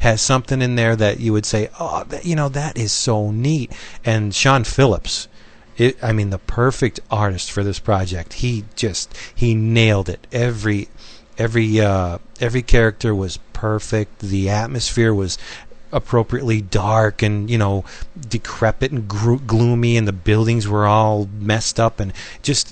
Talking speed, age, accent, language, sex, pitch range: 160 wpm, 40-59, American, English, male, 105-115 Hz